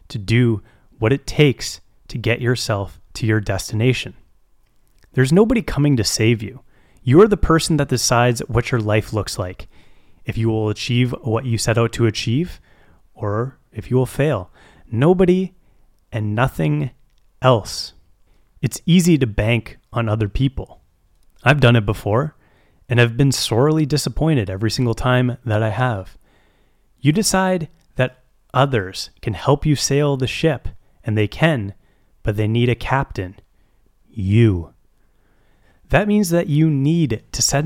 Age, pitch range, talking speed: 30-49, 105-140 Hz, 150 wpm